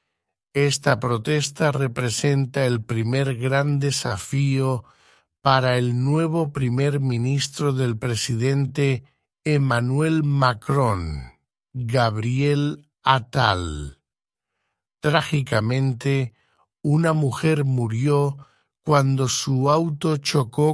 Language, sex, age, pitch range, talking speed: English, male, 60-79, 120-150 Hz, 75 wpm